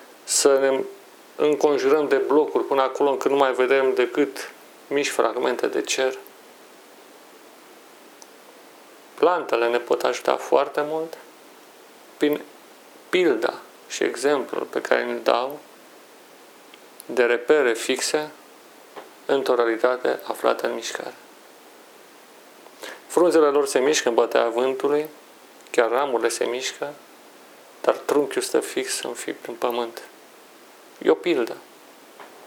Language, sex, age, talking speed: Romanian, male, 40-59, 110 wpm